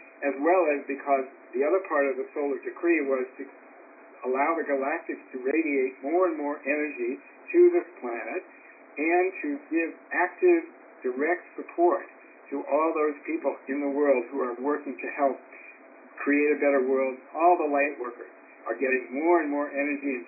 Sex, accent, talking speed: male, American, 170 wpm